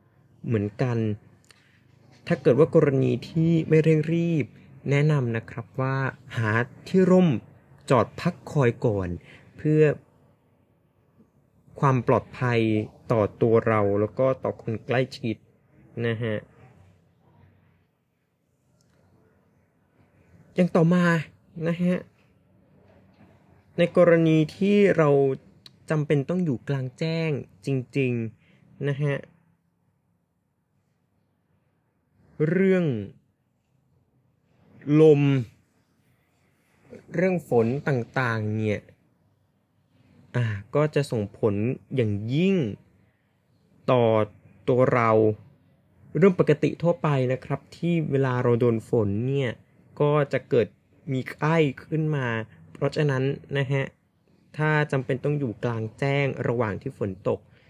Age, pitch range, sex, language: 20-39, 115-155 Hz, male, Thai